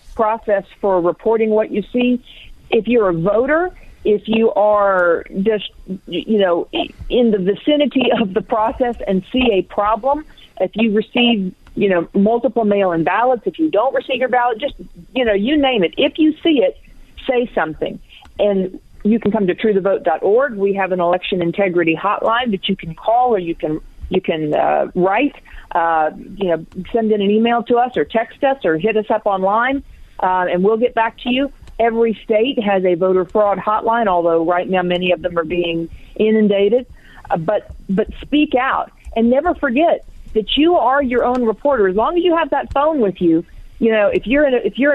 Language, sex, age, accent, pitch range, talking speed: English, female, 50-69, American, 190-255 Hz, 195 wpm